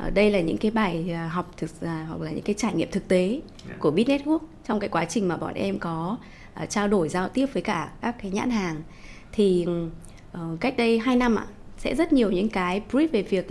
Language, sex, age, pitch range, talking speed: Vietnamese, female, 20-39, 175-235 Hz, 220 wpm